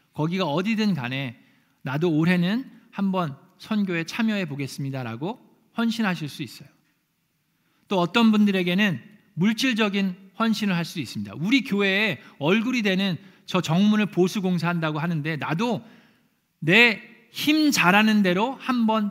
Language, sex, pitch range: Korean, male, 155-215 Hz